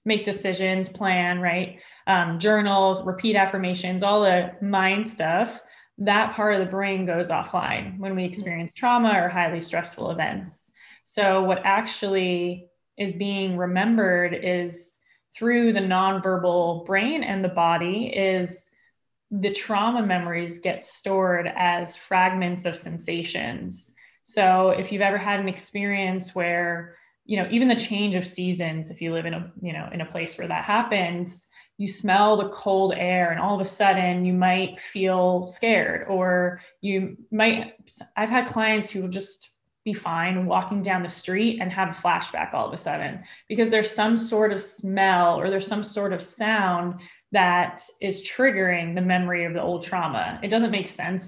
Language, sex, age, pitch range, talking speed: English, female, 20-39, 180-205 Hz, 165 wpm